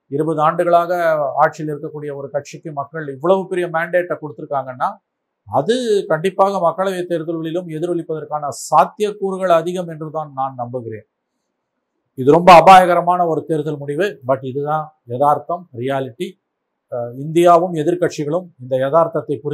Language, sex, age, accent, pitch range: Tamil, male, 50-69, native, 145-175 Hz